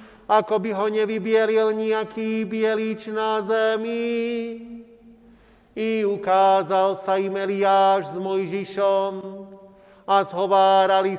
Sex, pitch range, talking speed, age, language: male, 200-220 Hz, 90 wpm, 40-59, Slovak